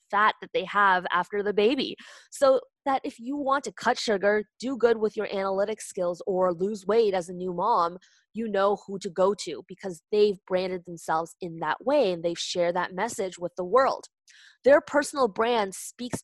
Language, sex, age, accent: English, female, 20-39, American